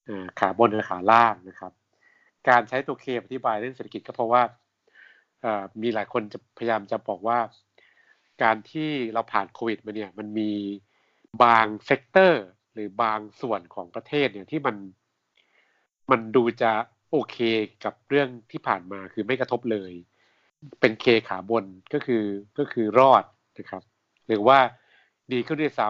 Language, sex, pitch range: Thai, male, 105-130 Hz